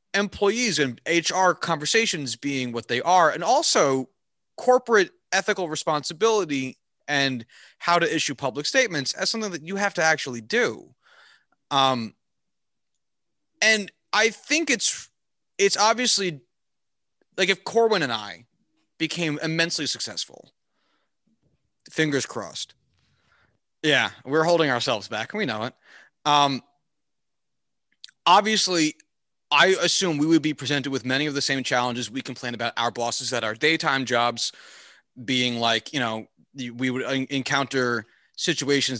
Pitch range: 125-170 Hz